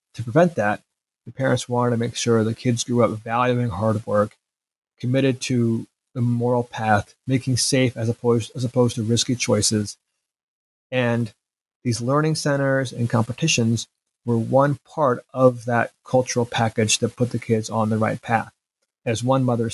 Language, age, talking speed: English, 30-49, 160 wpm